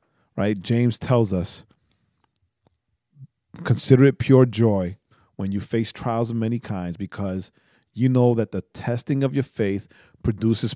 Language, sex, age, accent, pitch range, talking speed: English, male, 40-59, American, 100-130 Hz, 140 wpm